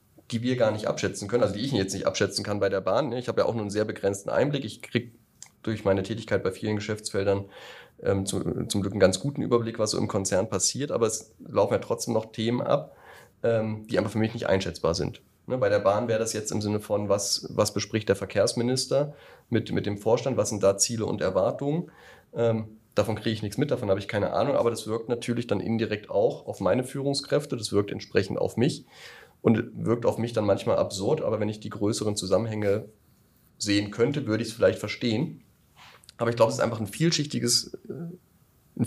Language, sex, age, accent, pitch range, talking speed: German, male, 30-49, German, 105-120 Hz, 210 wpm